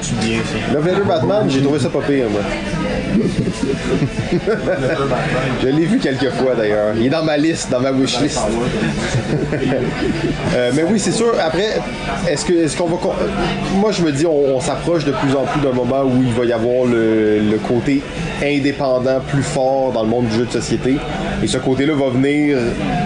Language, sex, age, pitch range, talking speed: French, male, 30-49, 115-140 Hz, 180 wpm